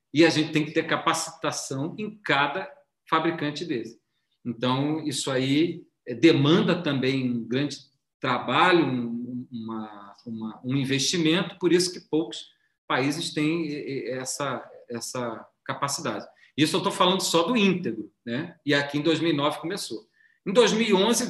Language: Portuguese